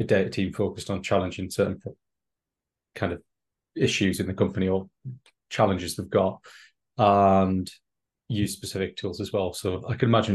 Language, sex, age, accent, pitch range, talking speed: English, male, 30-49, British, 100-115 Hz, 155 wpm